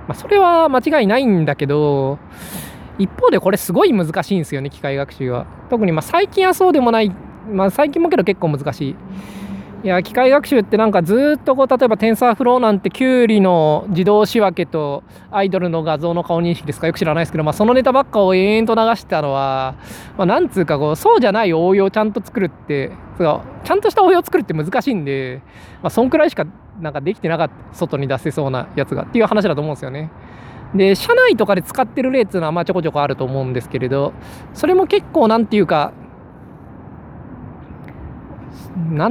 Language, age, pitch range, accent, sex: Japanese, 20-39, 145-230 Hz, native, male